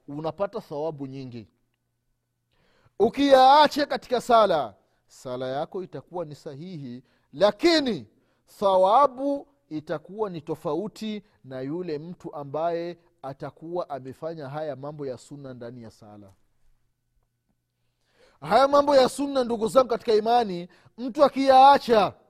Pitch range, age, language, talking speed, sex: 120-205 Hz, 40-59, Swahili, 100 wpm, male